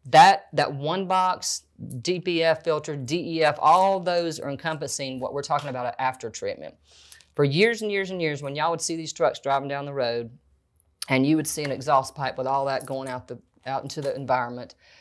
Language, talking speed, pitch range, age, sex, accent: English, 200 wpm, 130-155 Hz, 30-49, female, American